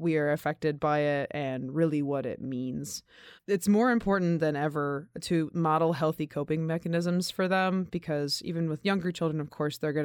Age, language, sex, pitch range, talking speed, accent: 20-39, English, female, 140-165 Hz, 185 wpm, American